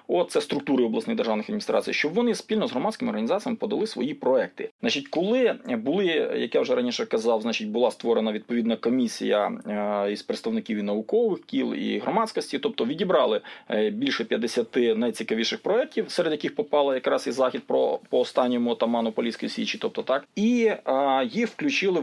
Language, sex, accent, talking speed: Ukrainian, male, native, 160 wpm